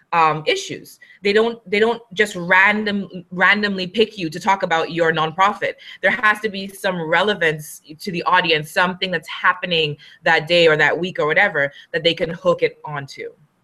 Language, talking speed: English, 180 wpm